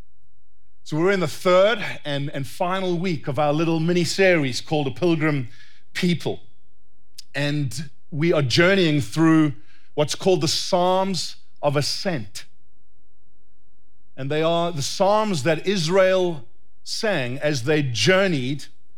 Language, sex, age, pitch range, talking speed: Italian, male, 40-59, 115-170 Hz, 125 wpm